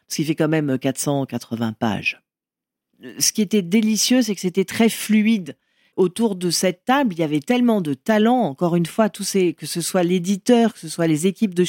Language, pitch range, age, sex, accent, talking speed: French, 155-210 Hz, 40-59, female, French, 210 wpm